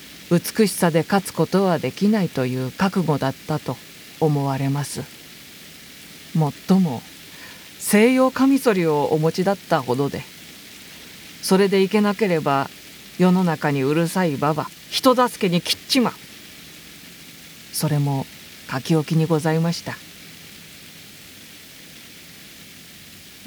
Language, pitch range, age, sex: Japanese, 160-195 Hz, 50-69, female